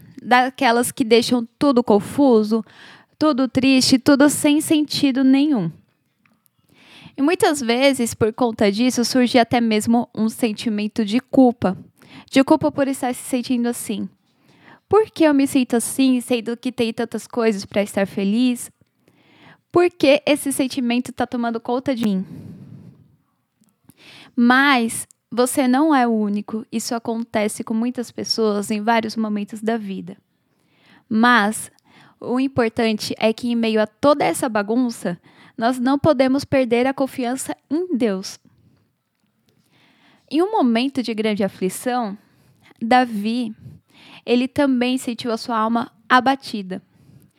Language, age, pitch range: Portuguese, 10-29, 225-270 Hz